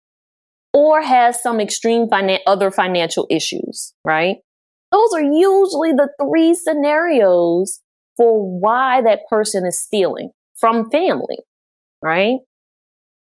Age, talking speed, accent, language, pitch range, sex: 20-39, 110 wpm, American, English, 180-245 Hz, female